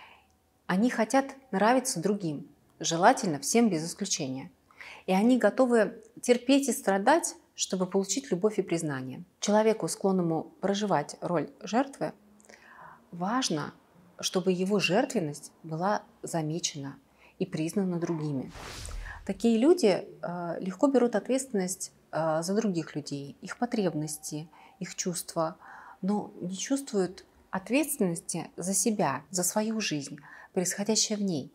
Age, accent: 30-49, native